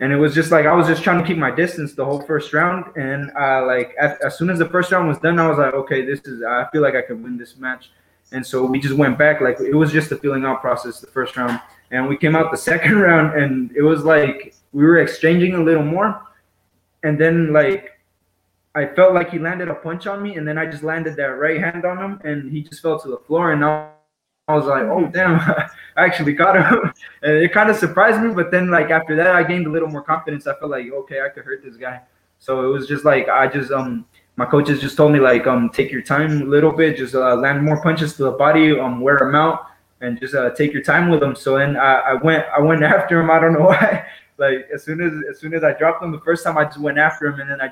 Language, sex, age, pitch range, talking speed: English, male, 20-39, 135-165 Hz, 275 wpm